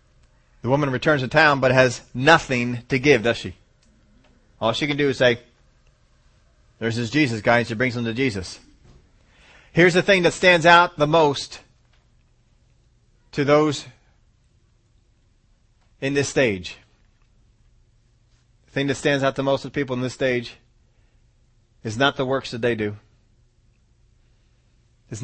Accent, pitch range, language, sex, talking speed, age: American, 105-135 Hz, English, male, 145 wpm, 30-49